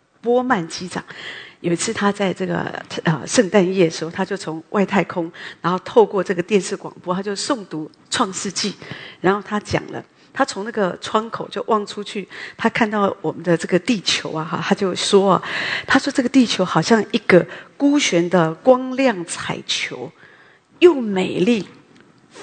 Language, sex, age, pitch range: English, female, 40-59, 175-230 Hz